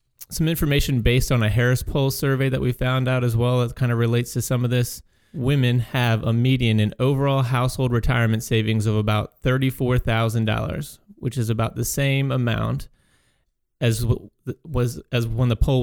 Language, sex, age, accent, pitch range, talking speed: English, male, 30-49, American, 115-135 Hz, 180 wpm